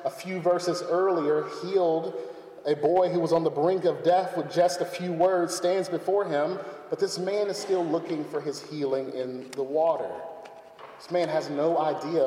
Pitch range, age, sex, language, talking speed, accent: 155-185 Hz, 30-49, male, English, 190 wpm, American